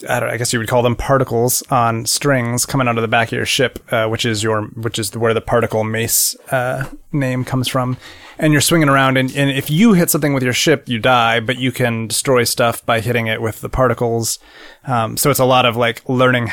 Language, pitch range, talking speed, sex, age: English, 115-135 Hz, 245 wpm, male, 30-49